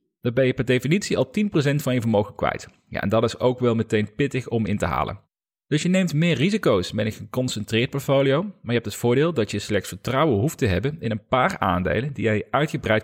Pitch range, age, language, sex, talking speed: 100-140 Hz, 40-59, Dutch, male, 230 wpm